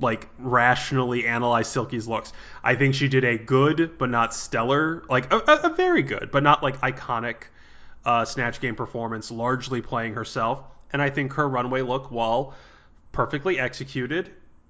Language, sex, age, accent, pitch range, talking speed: English, male, 20-39, American, 120-145 Hz, 160 wpm